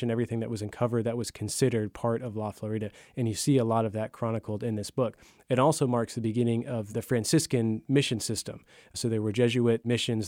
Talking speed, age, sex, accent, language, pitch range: 220 wpm, 30-49, male, American, English, 110-125 Hz